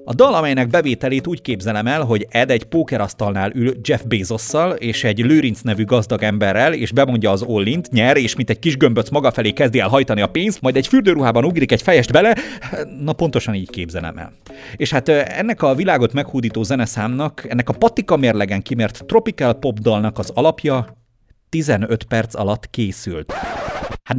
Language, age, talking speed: Hungarian, 30-49, 175 wpm